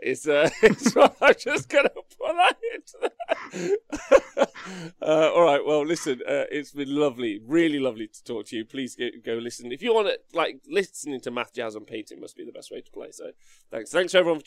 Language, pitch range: English, 125-170 Hz